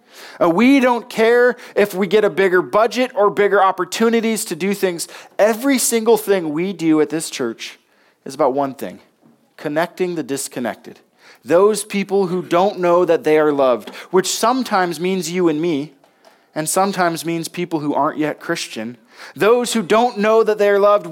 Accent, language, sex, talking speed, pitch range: American, English, male, 175 wpm, 165-215 Hz